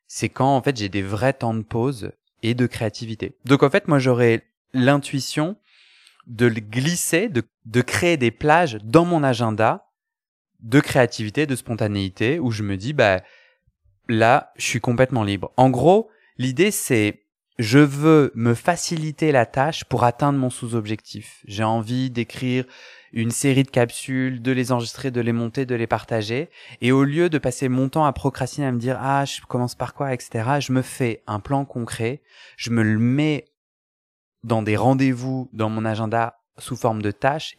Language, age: French, 20-39